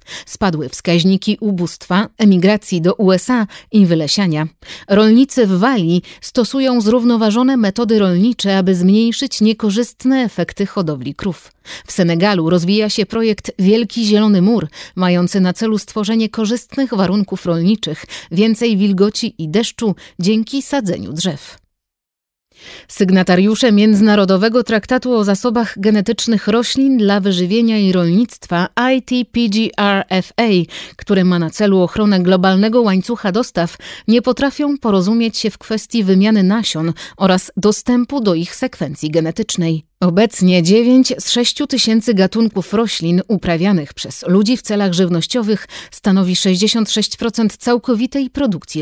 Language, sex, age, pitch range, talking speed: Polish, female, 30-49, 185-230 Hz, 115 wpm